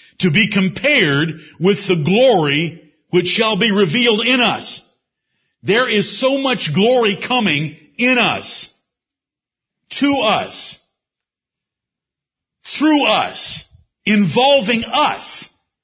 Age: 50-69